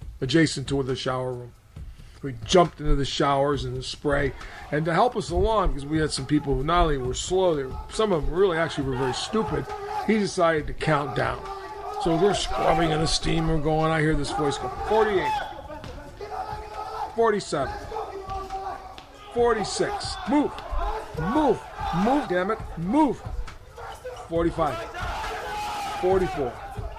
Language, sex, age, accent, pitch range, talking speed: English, male, 40-59, American, 150-235 Hz, 145 wpm